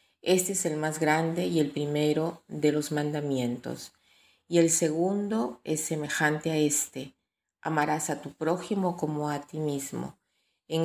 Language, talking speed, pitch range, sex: Spanish, 150 wpm, 150-170 Hz, female